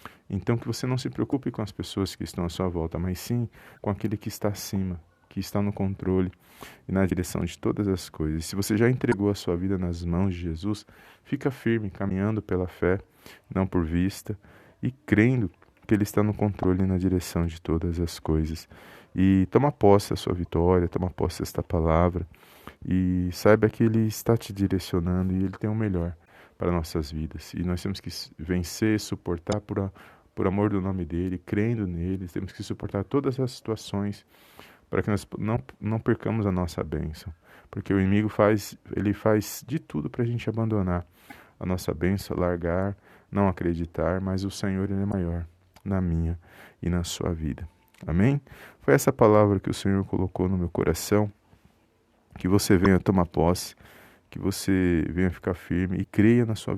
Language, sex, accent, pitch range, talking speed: Portuguese, male, Brazilian, 90-105 Hz, 185 wpm